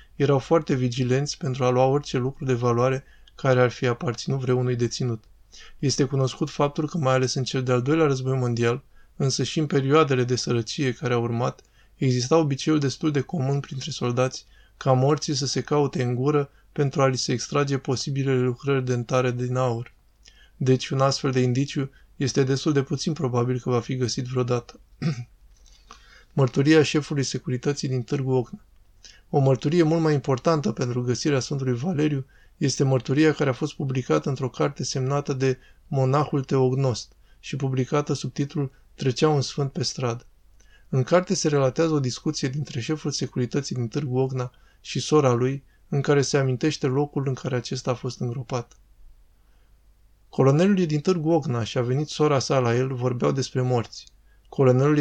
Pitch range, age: 125-145 Hz, 20-39